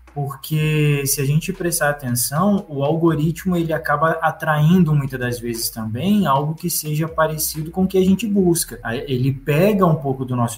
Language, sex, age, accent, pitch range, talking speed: Portuguese, male, 20-39, Brazilian, 130-170 Hz, 175 wpm